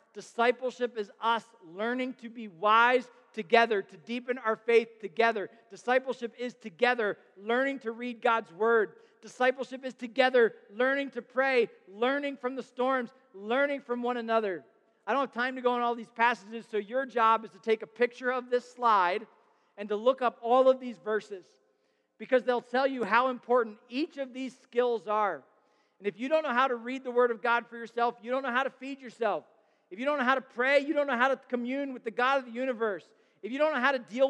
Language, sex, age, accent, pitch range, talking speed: English, male, 40-59, American, 210-255 Hz, 215 wpm